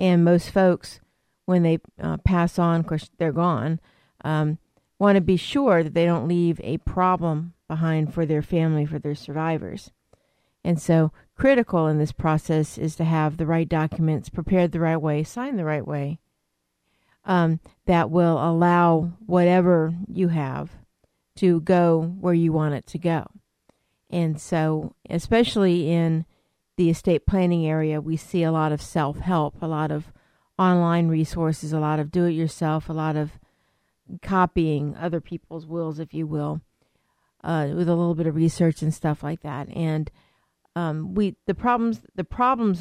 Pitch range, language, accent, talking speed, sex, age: 155-175 Hz, English, American, 165 wpm, female, 50-69